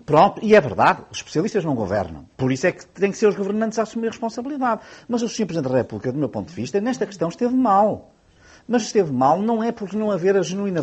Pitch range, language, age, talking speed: 165-225 Hz, Portuguese, 50-69, 255 wpm